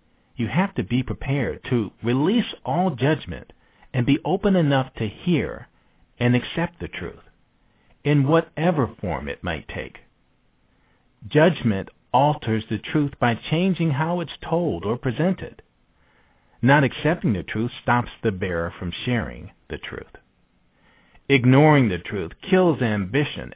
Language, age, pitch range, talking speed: English, 50-69, 105-155 Hz, 130 wpm